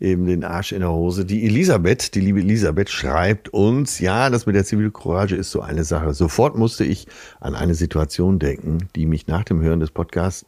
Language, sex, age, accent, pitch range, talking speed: German, male, 60-79, German, 85-110 Hz, 205 wpm